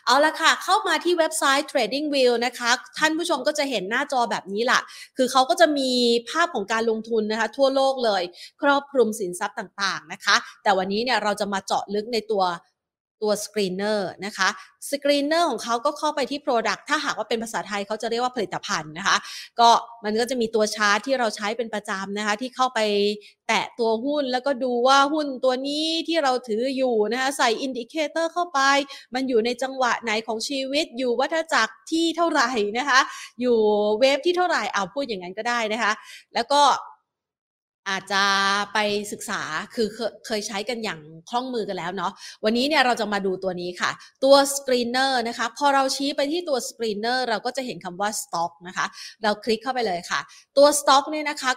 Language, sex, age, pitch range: Thai, female, 30-49, 210-275 Hz